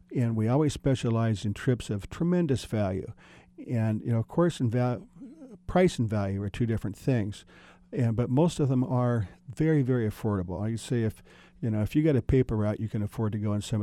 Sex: male